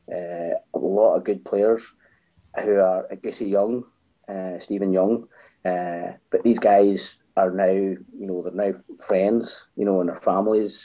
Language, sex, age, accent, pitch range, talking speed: English, male, 30-49, British, 90-110 Hz, 170 wpm